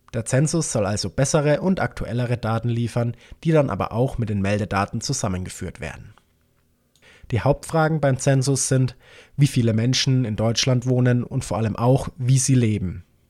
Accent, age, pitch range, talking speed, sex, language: German, 20-39, 105-135 Hz, 160 wpm, male, German